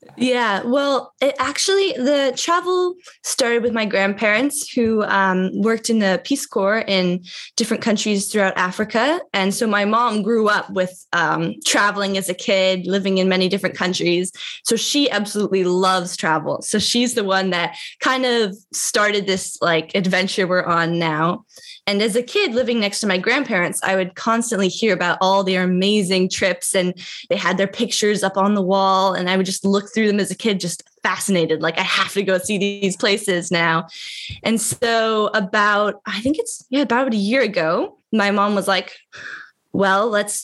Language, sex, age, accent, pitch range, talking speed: English, female, 10-29, American, 190-230 Hz, 180 wpm